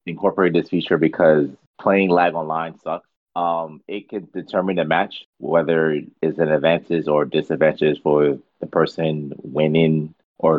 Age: 30-49